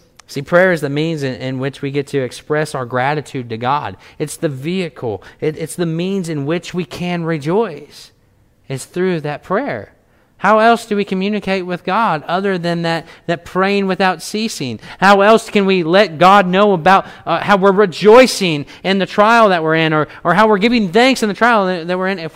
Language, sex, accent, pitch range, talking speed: English, male, American, 155-220 Hz, 205 wpm